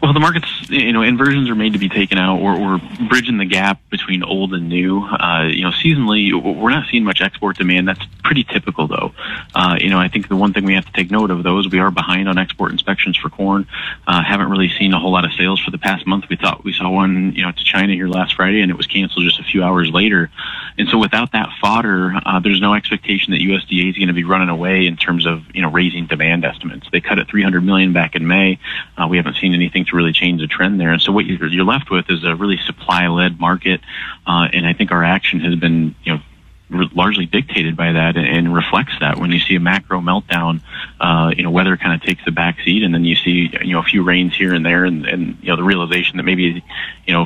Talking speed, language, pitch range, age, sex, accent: 255 wpm, English, 85-95 Hz, 30-49, male, American